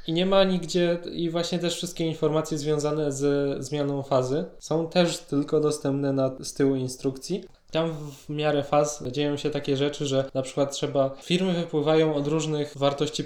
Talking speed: 175 wpm